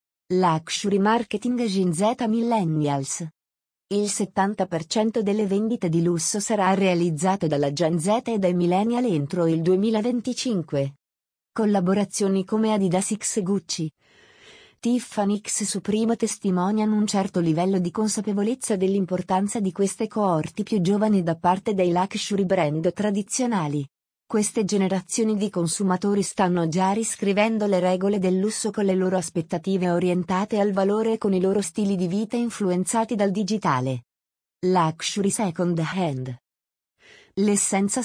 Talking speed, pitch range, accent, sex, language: 130 wpm, 175-215 Hz, native, female, Italian